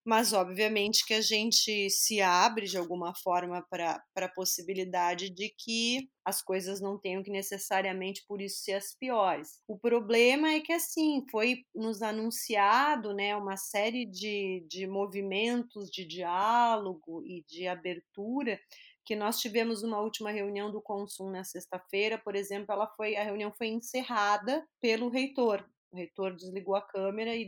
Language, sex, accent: Portuguese, female, Brazilian